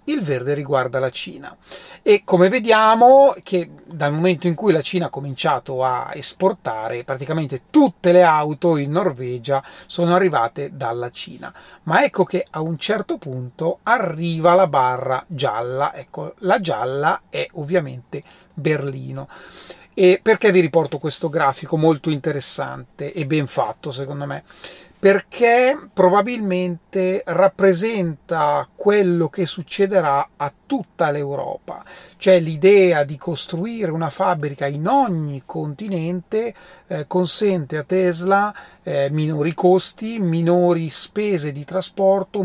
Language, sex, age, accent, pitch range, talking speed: Italian, male, 30-49, native, 145-185 Hz, 120 wpm